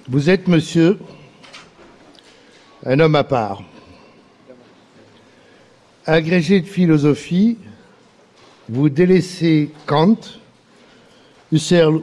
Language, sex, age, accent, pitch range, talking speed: French, male, 60-79, French, 150-215 Hz, 70 wpm